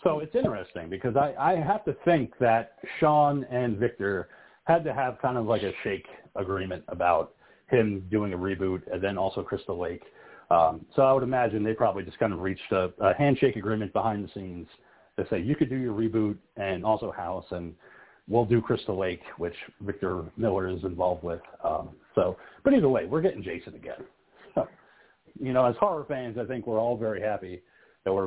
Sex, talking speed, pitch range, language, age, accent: male, 195 wpm, 95-130 Hz, English, 40-59, American